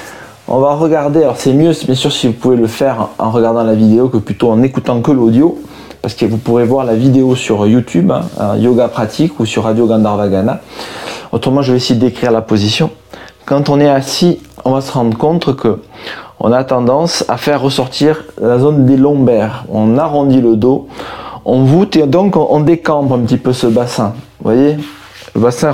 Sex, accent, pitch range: male, French, 115-145 Hz